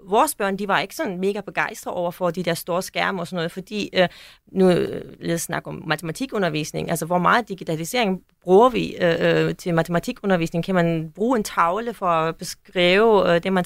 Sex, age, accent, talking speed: female, 30-49, native, 180 wpm